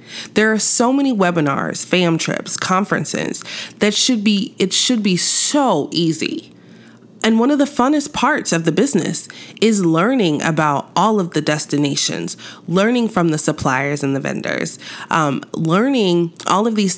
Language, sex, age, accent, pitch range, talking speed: English, female, 30-49, American, 155-215 Hz, 155 wpm